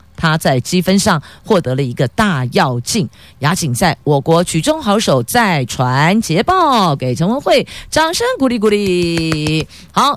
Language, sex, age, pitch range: Chinese, female, 50-69, 160-235 Hz